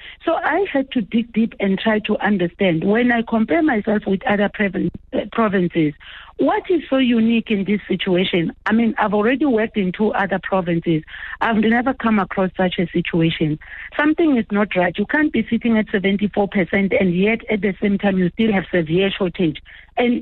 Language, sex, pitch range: English, female, 180-230 Hz